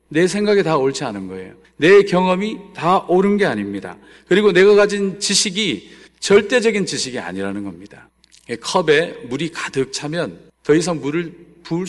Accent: native